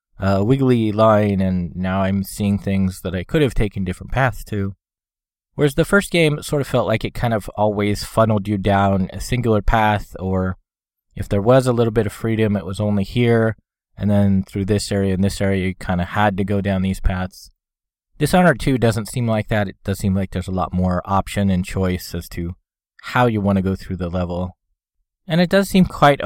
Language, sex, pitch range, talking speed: English, male, 95-125 Hz, 220 wpm